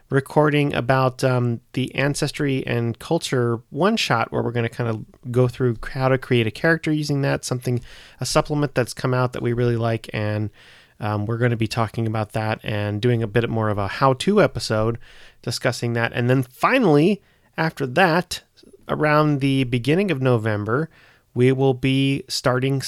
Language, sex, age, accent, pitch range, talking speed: English, male, 30-49, American, 115-135 Hz, 175 wpm